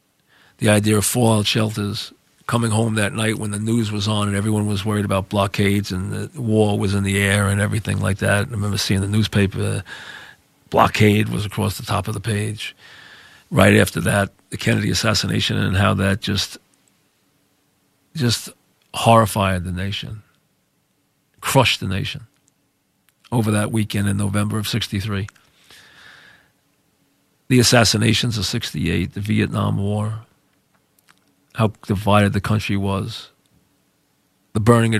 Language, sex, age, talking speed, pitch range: English, male, 40-59, 140 wpm, 100-110 Hz